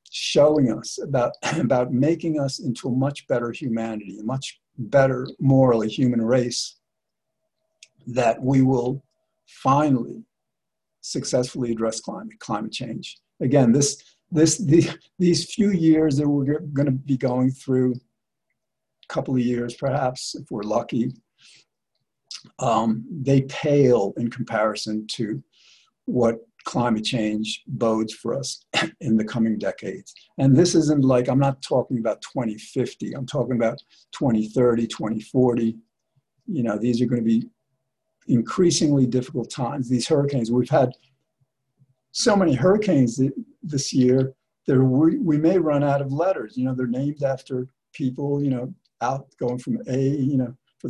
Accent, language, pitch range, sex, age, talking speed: American, English, 120-140 Hz, male, 60-79, 140 wpm